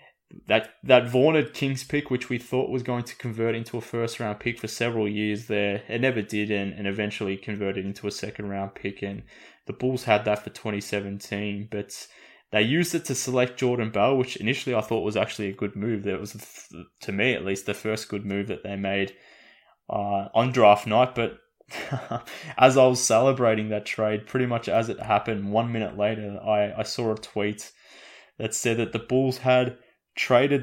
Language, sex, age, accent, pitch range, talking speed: English, male, 20-39, Australian, 100-125 Hz, 195 wpm